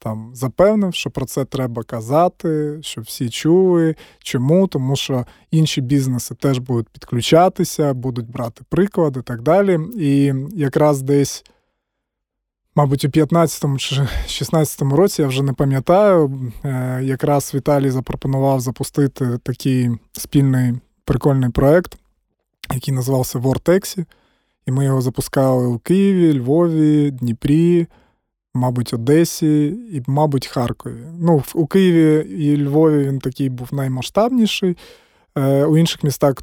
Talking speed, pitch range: 120 wpm, 135-160 Hz